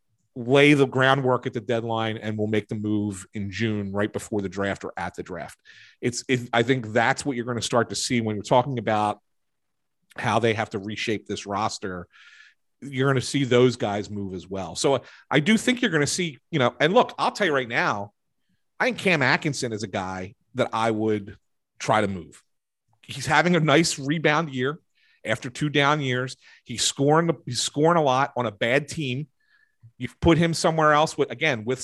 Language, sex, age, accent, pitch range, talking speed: English, male, 40-59, American, 110-140 Hz, 205 wpm